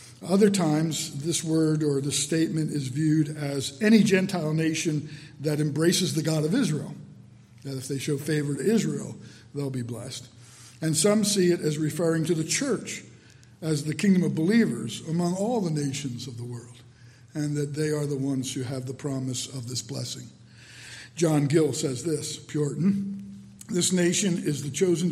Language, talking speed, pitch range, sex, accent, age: English, 175 wpm, 135-170 Hz, male, American, 50-69